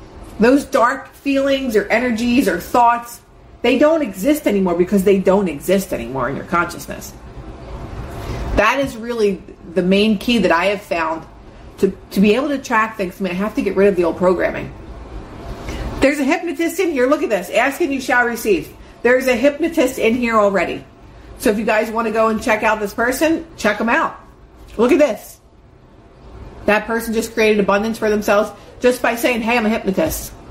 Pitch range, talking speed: 190-240 Hz, 190 wpm